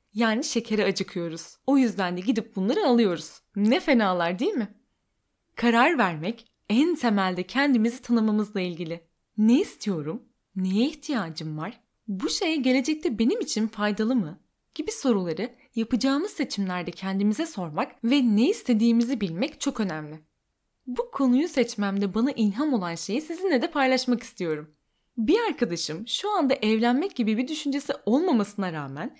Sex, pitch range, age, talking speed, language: female, 195-260 Hz, 10-29, 135 wpm, Turkish